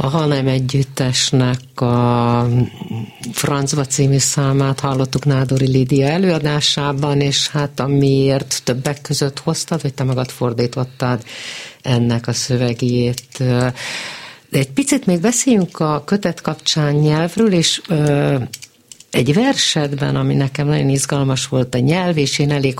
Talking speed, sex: 120 wpm, female